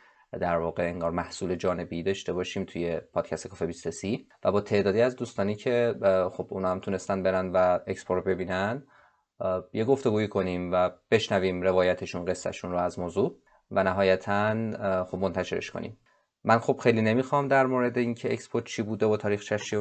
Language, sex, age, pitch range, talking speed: Persian, male, 20-39, 95-115 Hz, 165 wpm